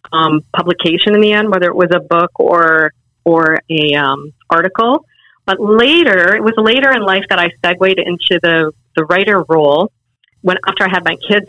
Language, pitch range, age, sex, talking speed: English, 170-205 Hz, 40-59, female, 190 wpm